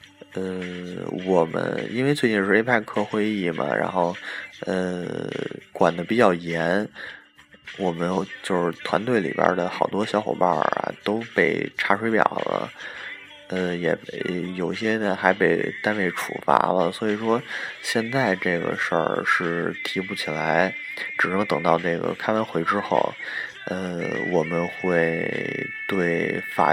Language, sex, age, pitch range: Chinese, male, 20-39, 85-100 Hz